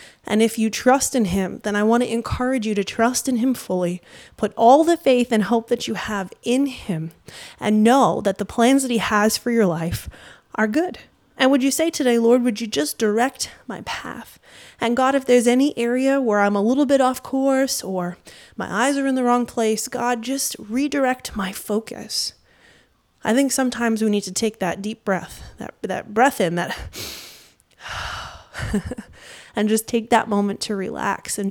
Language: English